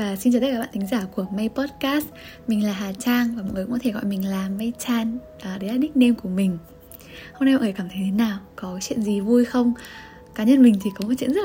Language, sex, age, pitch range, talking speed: Vietnamese, female, 10-29, 195-260 Hz, 275 wpm